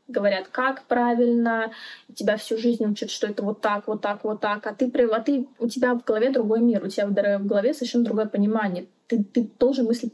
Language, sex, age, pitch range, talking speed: Russian, female, 20-39, 205-250 Hz, 205 wpm